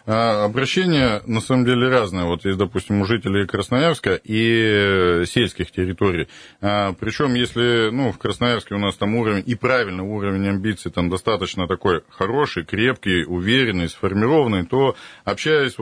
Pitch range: 100-125 Hz